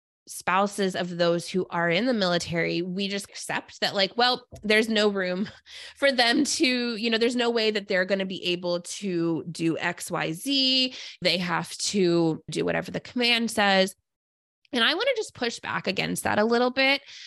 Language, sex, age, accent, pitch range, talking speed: English, female, 20-39, American, 175-230 Hz, 190 wpm